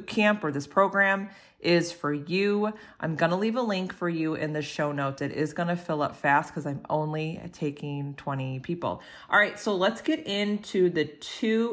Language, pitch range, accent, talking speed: English, 150-195 Hz, American, 205 wpm